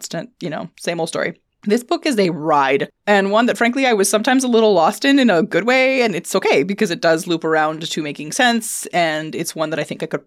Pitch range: 150-210 Hz